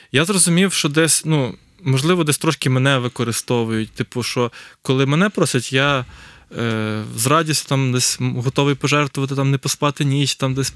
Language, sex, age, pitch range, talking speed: Ukrainian, male, 20-39, 130-160 Hz, 160 wpm